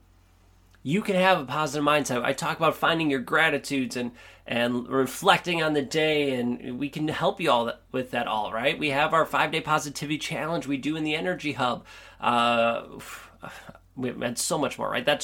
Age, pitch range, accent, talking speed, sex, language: 30-49, 110-155 Hz, American, 190 wpm, male, English